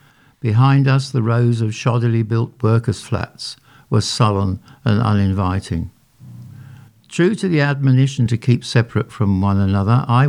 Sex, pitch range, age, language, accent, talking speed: male, 110-135 Hz, 60-79, English, British, 140 wpm